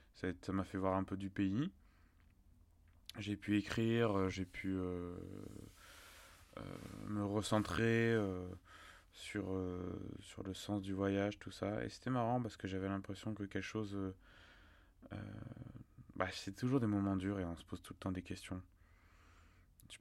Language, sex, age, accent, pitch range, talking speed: French, male, 20-39, French, 90-105 Hz, 160 wpm